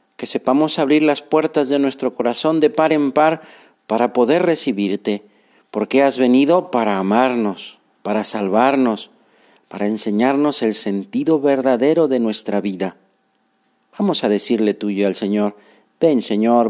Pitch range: 110-165 Hz